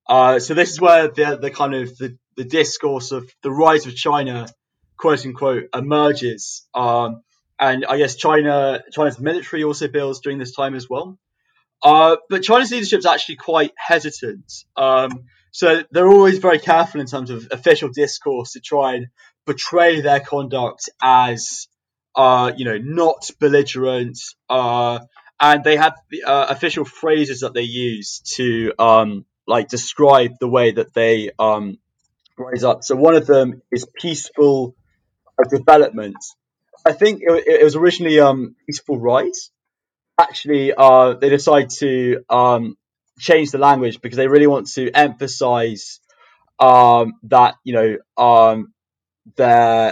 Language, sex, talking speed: English, male, 150 wpm